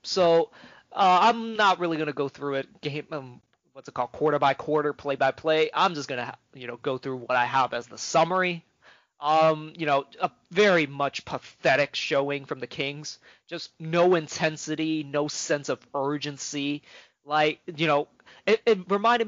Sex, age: male, 30-49